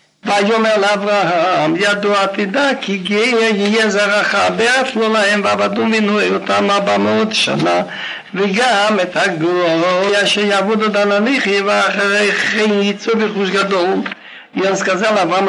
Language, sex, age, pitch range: Russian, male, 60-79, 195-230 Hz